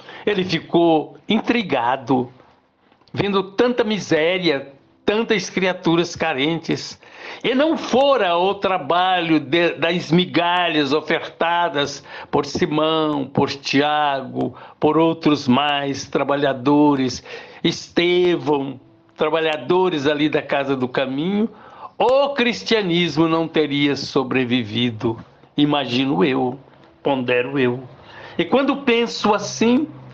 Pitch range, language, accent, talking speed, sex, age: 140-180 Hz, Portuguese, Brazilian, 90 wpm, male, 60-79